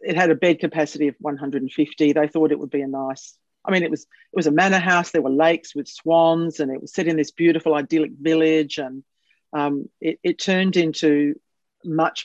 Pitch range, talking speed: 145-180 Hz, 215 wpm